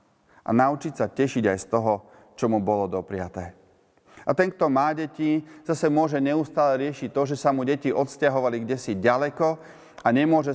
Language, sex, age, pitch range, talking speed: Slovak, male, 30-49, 105-140 Hz, 170 wpm